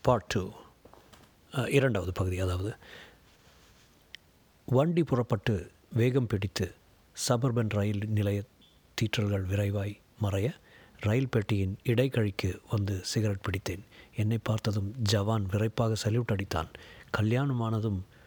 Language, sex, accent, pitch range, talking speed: Tamil, male, native, 100-135 Hz, 90 wpm